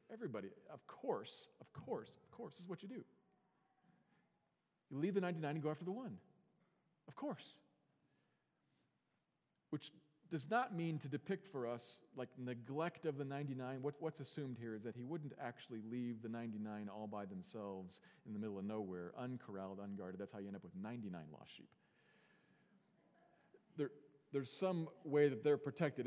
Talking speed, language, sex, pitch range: 170 wpm, English, male, 120-160 Hz